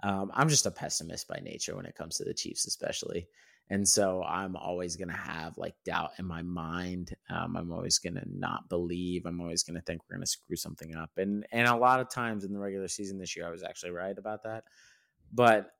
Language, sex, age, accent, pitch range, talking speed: English, male, 30-49, American, 90-110 Hz, 240 wpm